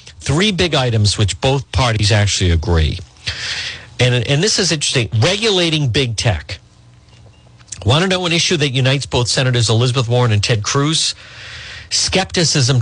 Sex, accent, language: male, American, English